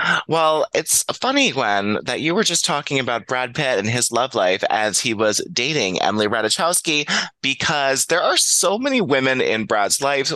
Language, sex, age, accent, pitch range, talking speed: English, male, 20-39, American, 110-160 Hz, 180 wpm